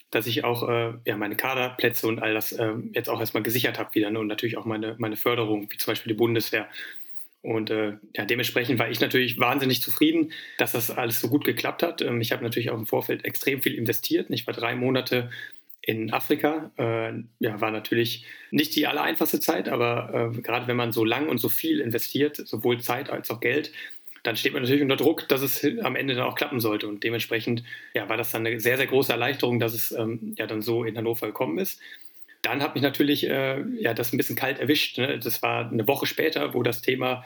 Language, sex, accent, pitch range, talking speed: German, male, German, 115-135 Hz, 220 wpm